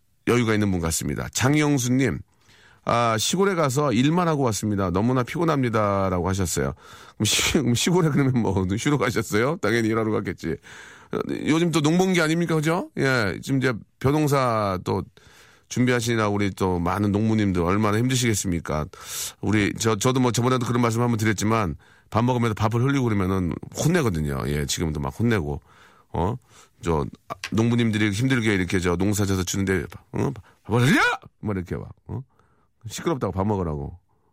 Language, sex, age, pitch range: Korean, male, 40-59, 95-130 Hz